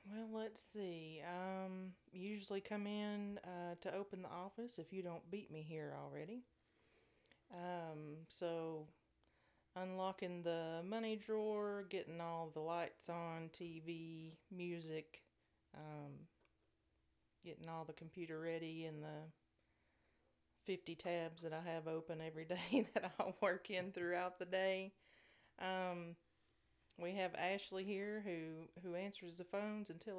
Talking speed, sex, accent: 130 wpm, female, American